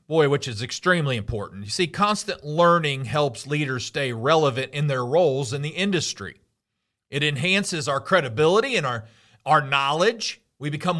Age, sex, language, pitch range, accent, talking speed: 40-59, male, English, 125-165 Hz, American, 160 wpm